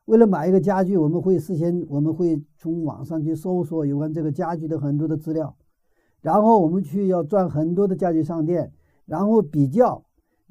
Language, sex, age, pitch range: Chinese, male, 50-69, 145-195 Hz